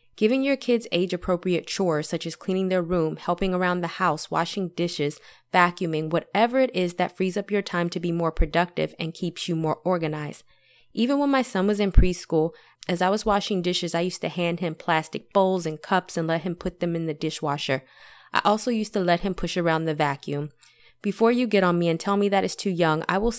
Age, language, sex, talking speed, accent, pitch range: 20-39, English, female, 225 wpm, American, 165-195 Hz